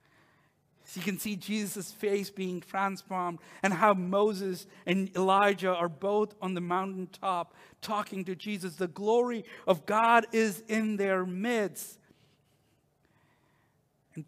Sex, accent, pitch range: male, American, 170-220 Hz